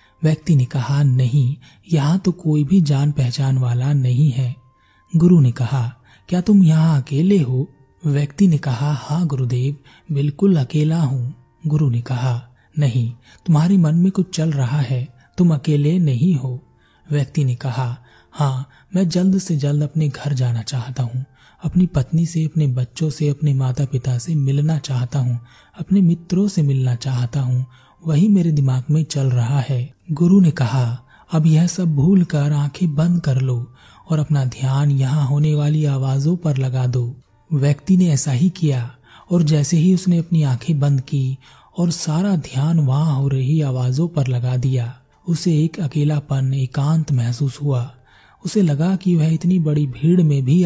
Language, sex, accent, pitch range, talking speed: Hindi, male, native, 130-160 Hz, 140 wpm